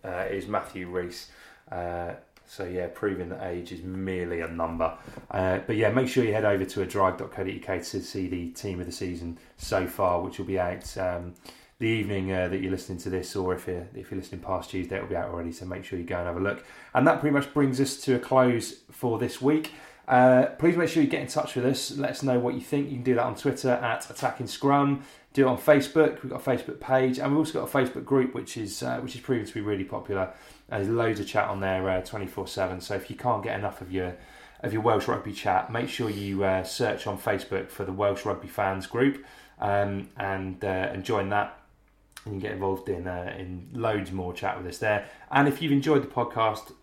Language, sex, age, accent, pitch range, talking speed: English, male, 30-49, British, 95-125 Hz, 245 wpm